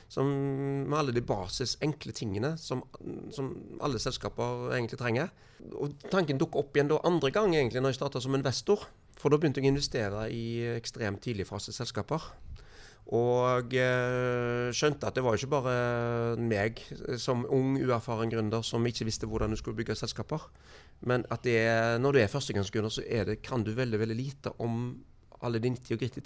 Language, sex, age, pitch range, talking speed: English, male, 30-49, 110-135 Hz, 185 wpm